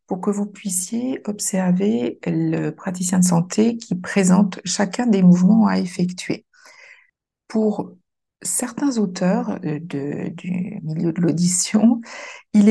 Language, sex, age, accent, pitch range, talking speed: French, female, 50-69, French, 175-220 Hz, 115 wpm